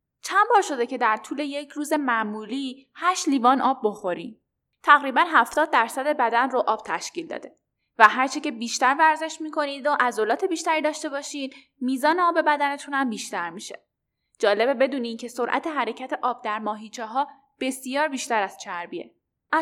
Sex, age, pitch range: female, 10-29, 220-300 Hz